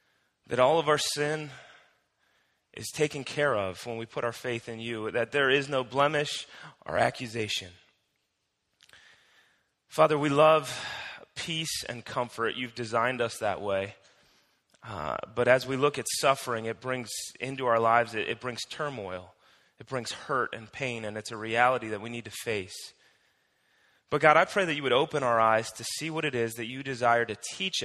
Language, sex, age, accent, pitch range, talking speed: English, male, 30-49, American, 115-135 Hz, 180 wpm